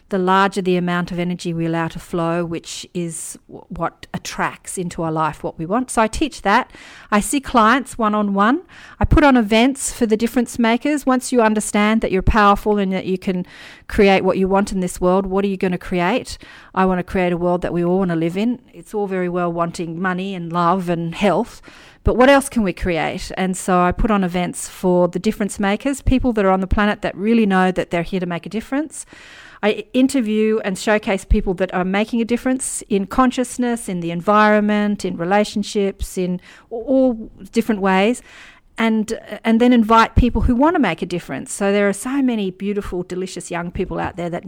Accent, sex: Australian, female